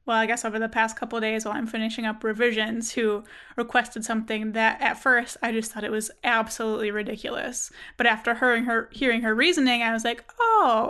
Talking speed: 215 wpm